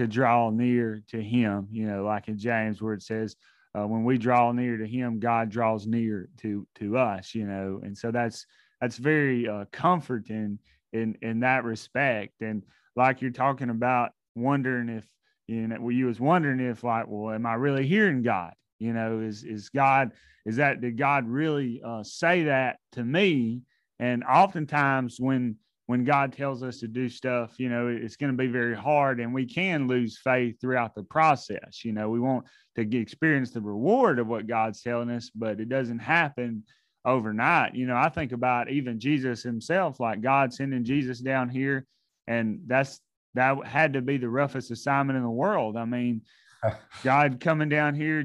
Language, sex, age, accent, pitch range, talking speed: English, male, 30-49, American, 115-135 Hz, 190 wpm